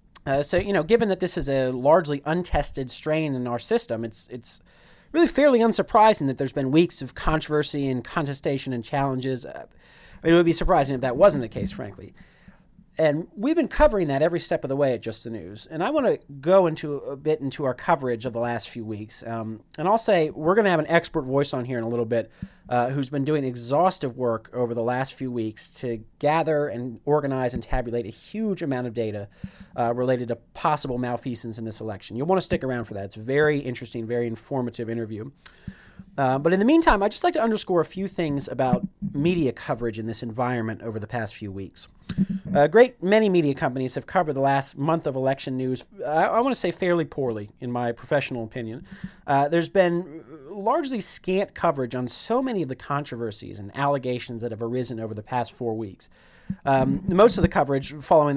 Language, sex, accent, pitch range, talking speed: English, male, American, 120-170 Hz, 215 wpm